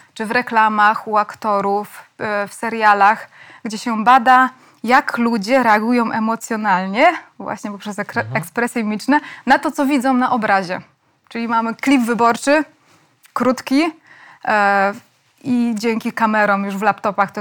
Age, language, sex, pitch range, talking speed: 20-39, Polish, female, 215-260 Hz, 130 wpm